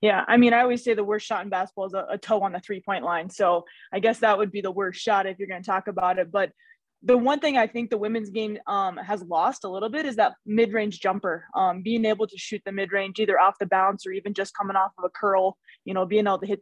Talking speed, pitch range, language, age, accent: 280 wpm, 190-215 Hz, English, 20-39, American